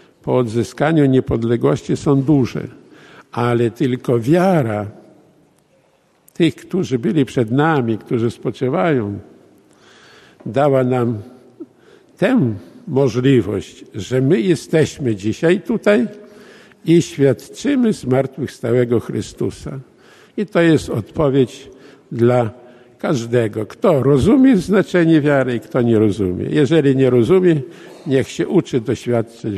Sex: male